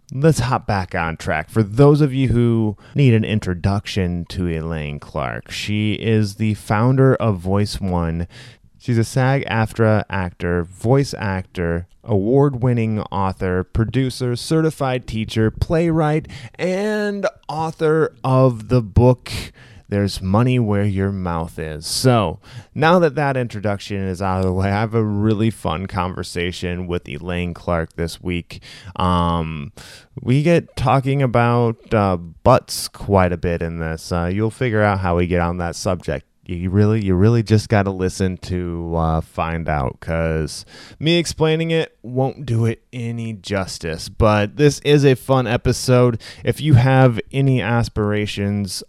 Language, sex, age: English, male, 20-39